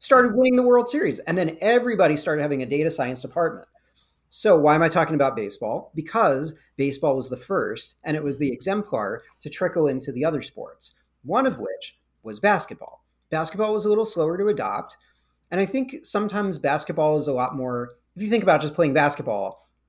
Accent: American